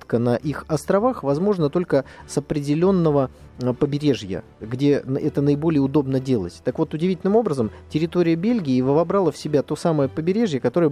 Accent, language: native, Russian